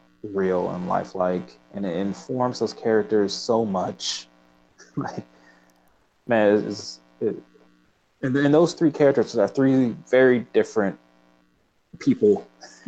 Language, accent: English, American